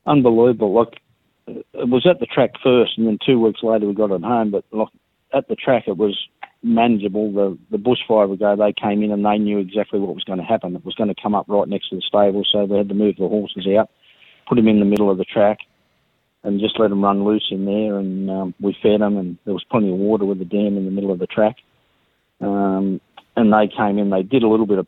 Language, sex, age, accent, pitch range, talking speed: English, male, 40-59, Australian, 100-110 Hz, 260 wpm